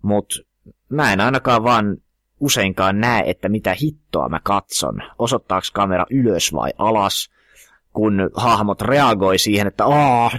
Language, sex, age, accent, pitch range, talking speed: Finnish, male, 30-49, native, 90-110 Hz, 135 wpm